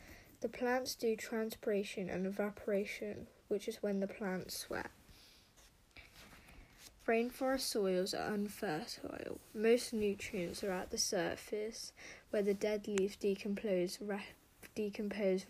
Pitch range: 195-225 Hz